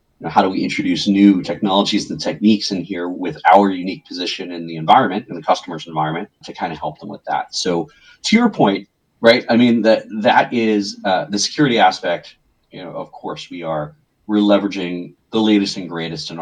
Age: 30-49